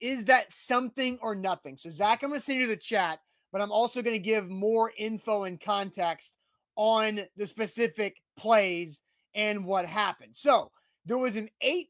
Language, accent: English, American